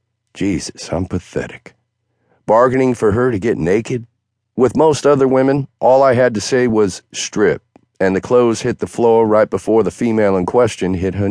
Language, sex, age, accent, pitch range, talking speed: English, male, 50-69, American, 85-115 Hz, 180 wpm